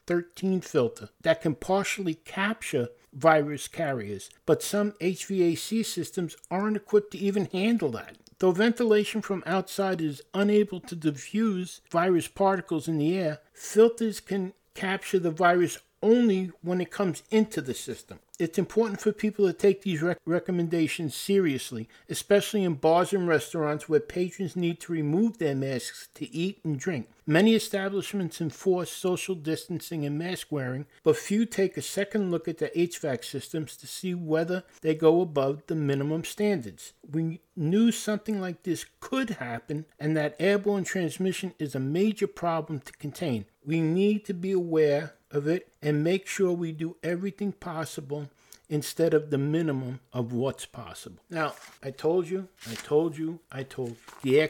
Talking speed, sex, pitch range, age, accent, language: 160 wpm, male, 155-195 Hz, 60-79, American, English